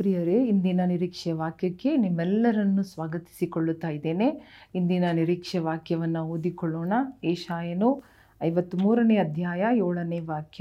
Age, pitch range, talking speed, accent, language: 40-59, 165-210 Hz, 90 wpm, native, Kannada